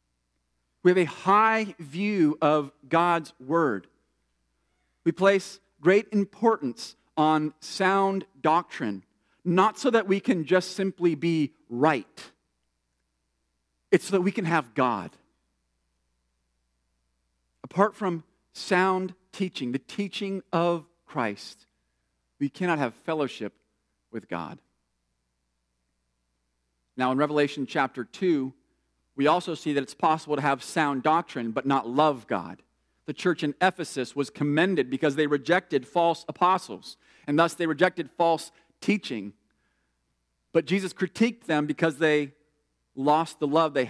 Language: English